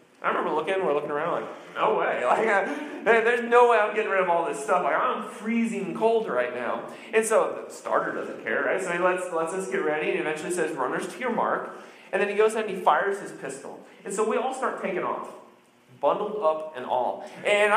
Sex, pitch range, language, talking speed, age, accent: male, 180-225 Hz, English, 225 wpm, 30-49, American